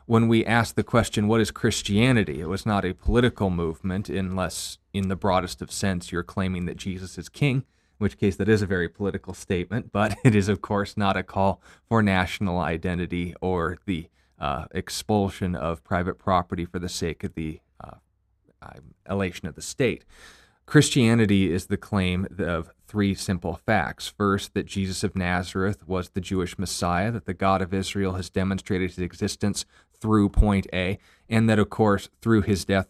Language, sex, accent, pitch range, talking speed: English, male, American, 90-105 Hz, 180 wpm